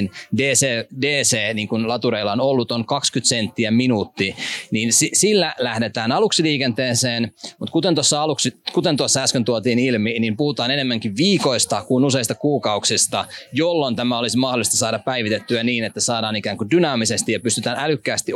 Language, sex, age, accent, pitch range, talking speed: Finnish, male, 20-39, native, 115-140 Hz, 145 wpm